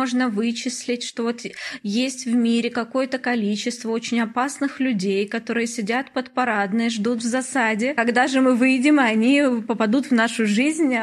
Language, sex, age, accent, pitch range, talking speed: Russian, female, 20-39, native, 215-255 Hz, 145 wpm